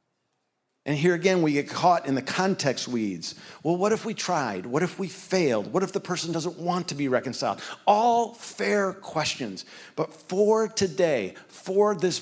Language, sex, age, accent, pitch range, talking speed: English, male, 50-69, American, 145-180 Hz, 175 wpm